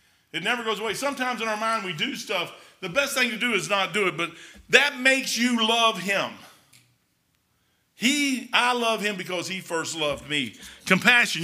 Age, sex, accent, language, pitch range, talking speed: 50-69, male, American, English, 150-215 Hz, 190 wpm